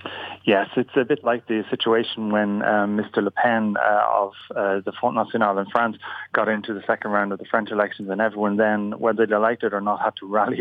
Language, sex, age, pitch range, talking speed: English, male, 30-49, 100-115 Hz, 230 wpm